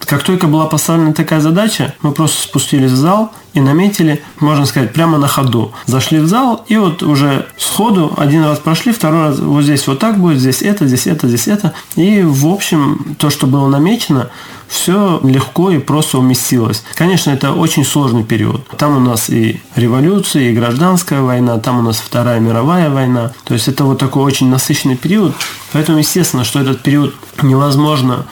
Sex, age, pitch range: male, 20-39, 120-155 Hz